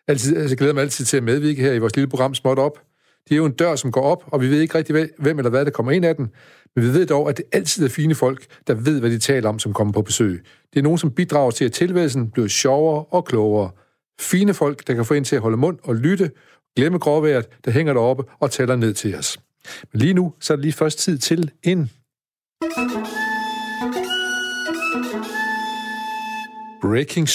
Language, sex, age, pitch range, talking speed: Danish, male, 60-79, 125-160 Hz, 225 wpm